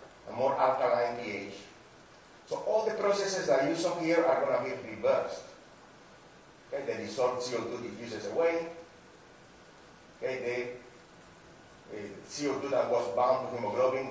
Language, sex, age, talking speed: English, male, 40-59, 130 wpm